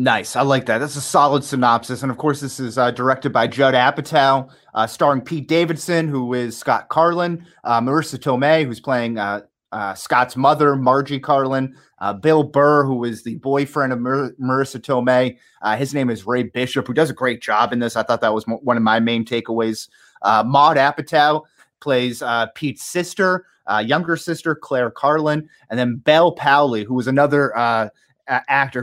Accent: American